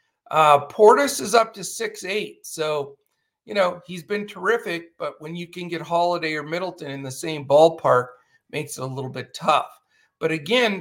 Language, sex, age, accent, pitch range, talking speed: English, male, 50-69, American, 150-205 Hz, 185 wpm